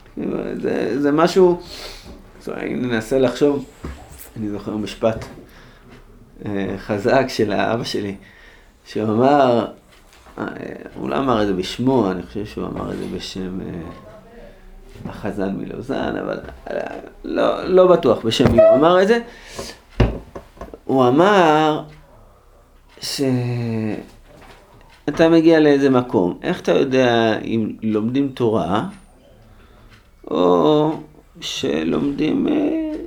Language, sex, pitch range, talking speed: Hebrew, male, 110-155 Hz, 105 wpm